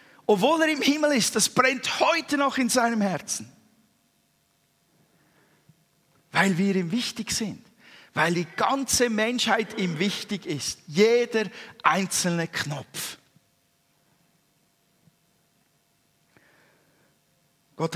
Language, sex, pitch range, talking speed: German, male, 150-205 Hz, 95 wpm